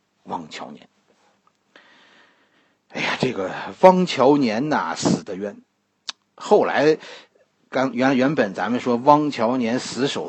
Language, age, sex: Chinese, 50-69, male